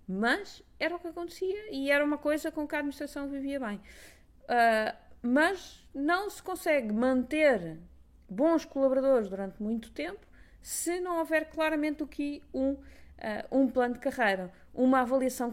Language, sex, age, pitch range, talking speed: Portuguese, female, 20-39, 235-290 Hz, 155 wpm